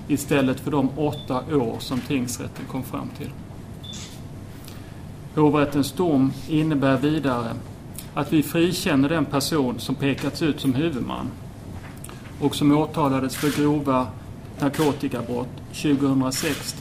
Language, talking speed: Swedish, 105 wpm